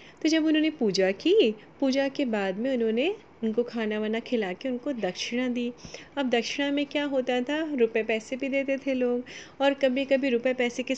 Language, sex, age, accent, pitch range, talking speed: Hindi, female, 30-49, native, 215-275 Hz, 200 wpm